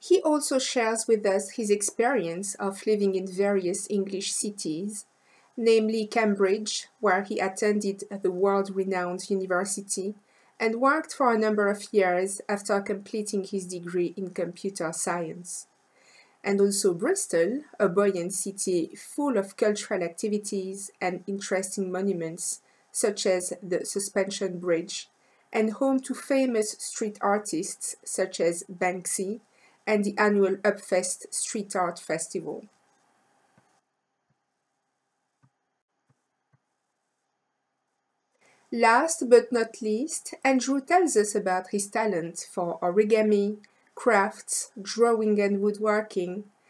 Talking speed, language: 110 wpm, English